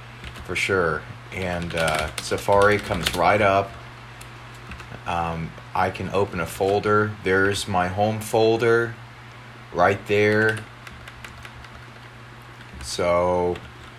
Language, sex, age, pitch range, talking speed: English, male, 30-49, 95-120 Hz, 90 wpm